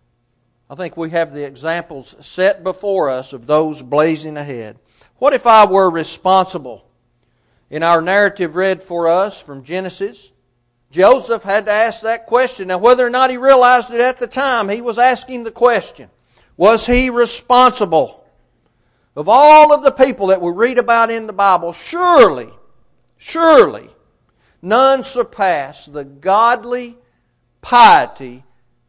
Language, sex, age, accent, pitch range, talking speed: English, male, 50-69, American, 135-225 Hz, 145 wpm